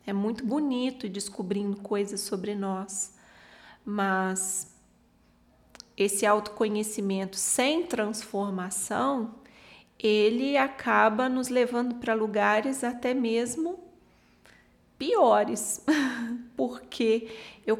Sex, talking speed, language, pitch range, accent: female, 80 wpm, Portuguese, 205-260 Hz, Brazilian